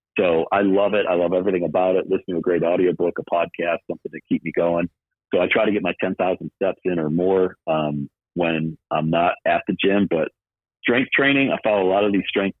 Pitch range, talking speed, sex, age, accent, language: 80-100 Hz, 240 wpm, male, 40-59, American, English